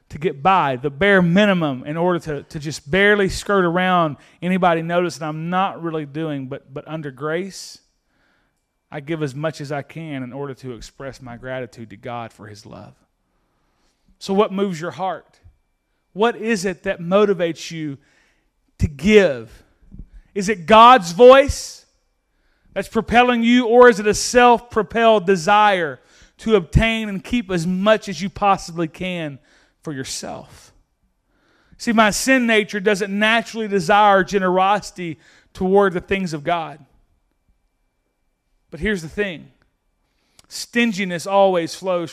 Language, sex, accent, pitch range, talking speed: English, male, American, 140-200 Hz, 145 wpm